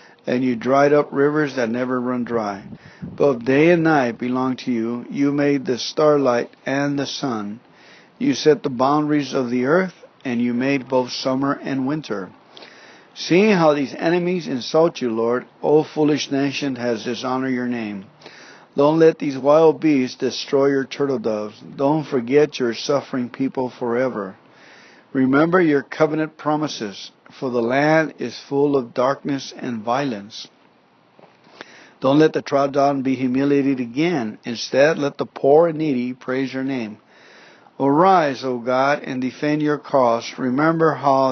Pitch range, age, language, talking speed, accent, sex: 125-150 Hz, 50-69, English, 150 wpm, American, male